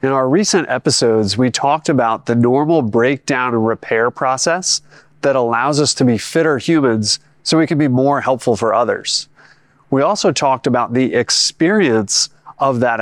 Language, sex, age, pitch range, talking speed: English, male, 30-49, 120-155 Hz, 165 wpm